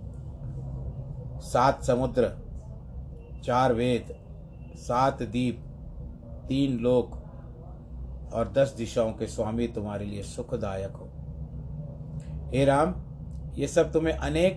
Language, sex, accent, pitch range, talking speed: Hindi, male, native, 110-130 Hz, 95 wpm